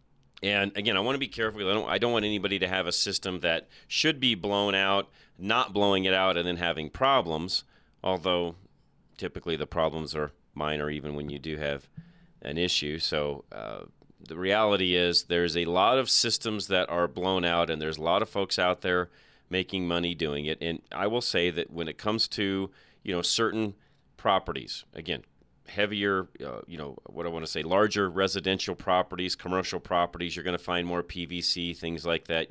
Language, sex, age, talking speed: English, male, 40-59, 195 wpm